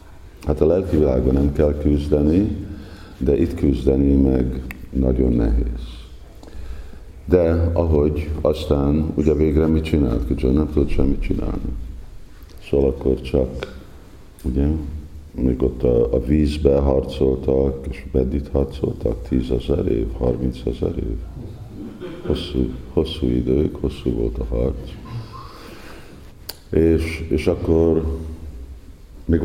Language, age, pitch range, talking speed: Hungarian, 50-69, 65-80 Hz, 110 wpm